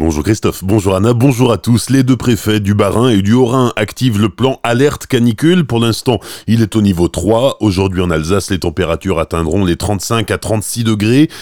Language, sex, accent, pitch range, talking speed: French, male, French, 95-120 Hz, 200 wpm